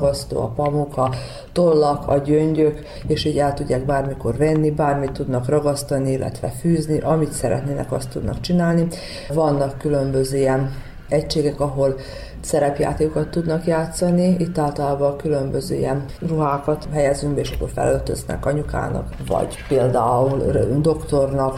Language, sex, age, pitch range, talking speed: Hungarian, female, 40-59, 135-155 Hz, 115 wpm